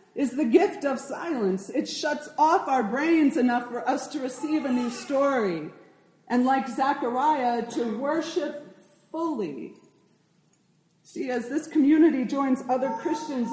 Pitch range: 225-285 Hz